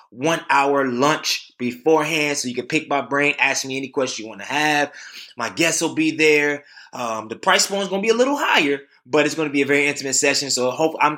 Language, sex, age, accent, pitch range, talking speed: English, male, 20-39, American, 125-150 Hz, 245 wpm